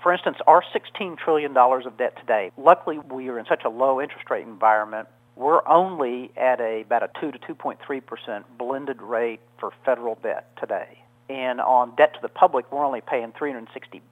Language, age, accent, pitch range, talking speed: English, 50-69, American, 115-140 Hz, 185 wpm